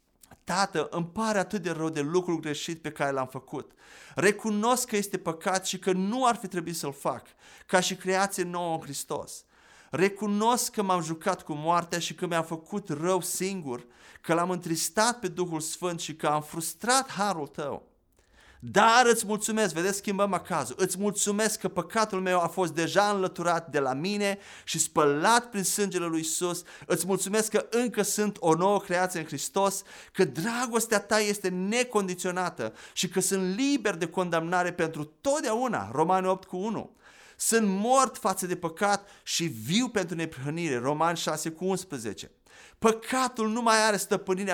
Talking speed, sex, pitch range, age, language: 165 wpm, male, 170-210 Hz, 30-49, Romanian